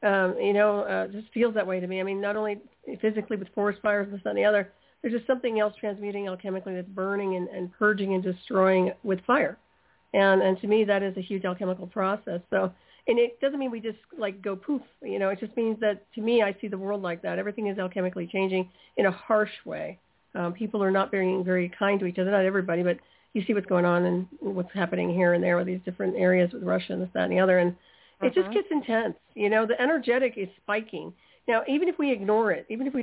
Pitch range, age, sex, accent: 185-220 Hz, 40-59, female, American